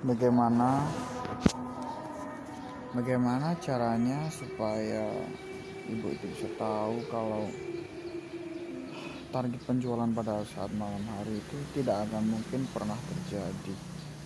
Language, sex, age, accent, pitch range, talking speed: Indonesian, male, 20-39, native, 110-140 Hz, 90 wpm